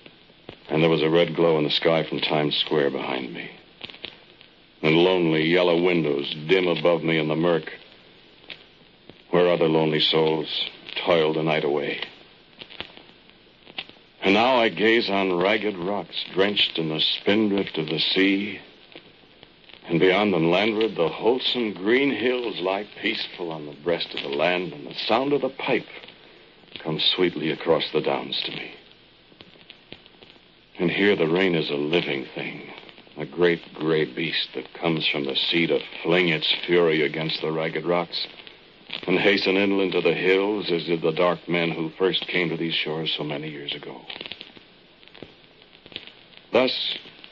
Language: English